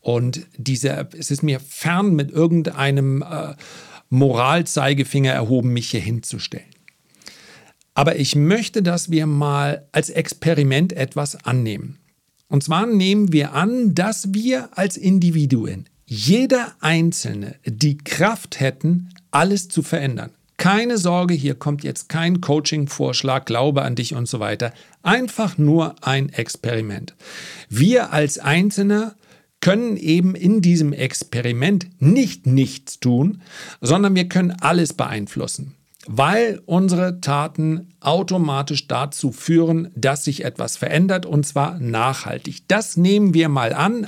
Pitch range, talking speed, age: 135-180 Hz, 125 wpm, 50-69